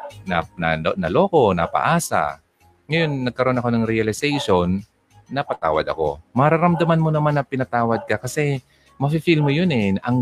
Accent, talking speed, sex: native, 140 wpm, male